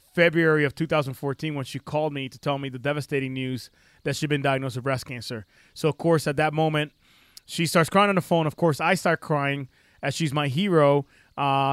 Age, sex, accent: 20-39, male, American